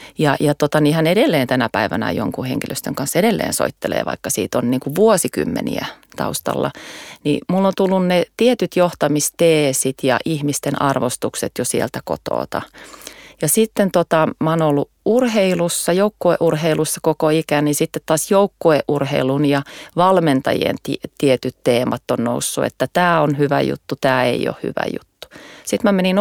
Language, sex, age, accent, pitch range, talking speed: Finnish, female, 30-49, native, 140-170 Hz, 150 wpm